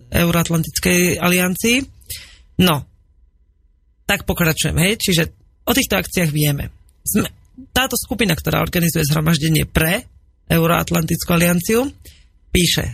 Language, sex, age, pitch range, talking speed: Slovak, female, 30-49, 155-200 Hz, 95 wpm